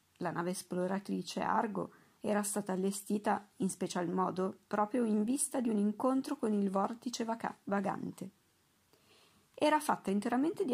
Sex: female